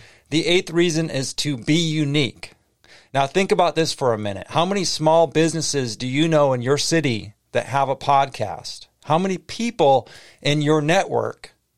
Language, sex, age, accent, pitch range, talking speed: English, male, 40-59, American, 125-160 Hz, 175 wpm